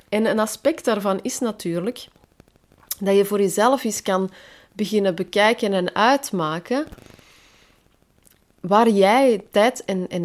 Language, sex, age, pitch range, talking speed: Dutch, female, 30-49, 185-250 Hz, 125 wpm